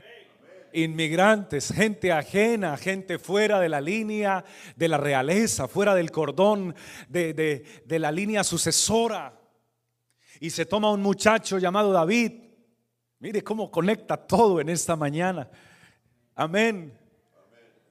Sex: male